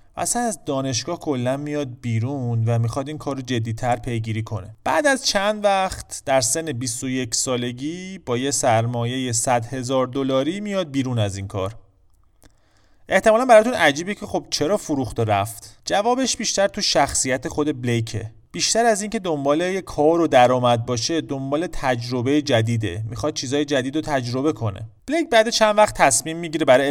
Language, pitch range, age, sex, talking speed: Persian, 120-165 Hz, 30-49, male, 165 wpm